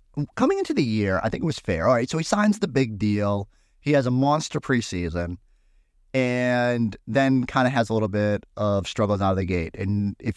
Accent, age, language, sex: American, 30-49, English, male